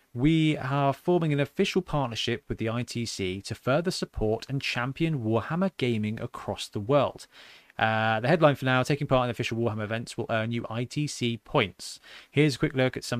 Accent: British